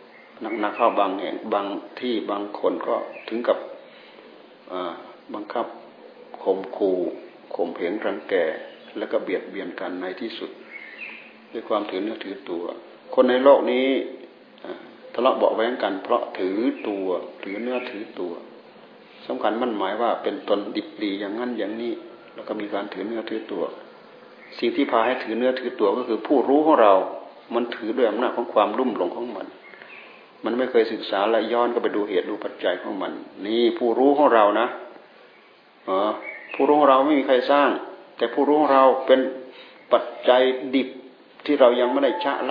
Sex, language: male, Thai